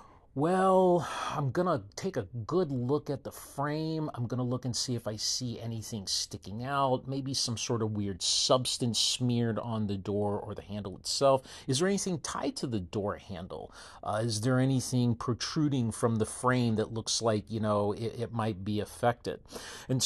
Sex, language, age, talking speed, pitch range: male, English, 40-59, 185 wpm, 105-145 Hz